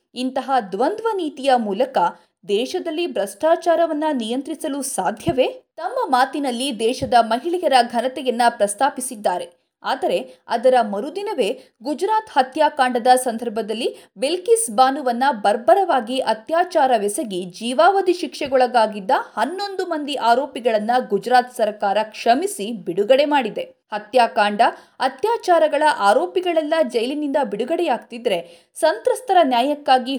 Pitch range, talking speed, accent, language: 230-330 Hz, 80 wpm, native, Kannada